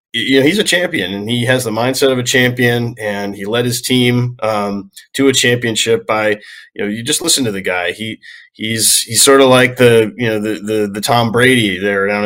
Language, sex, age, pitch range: English, male, 20-39, 105-120 Hz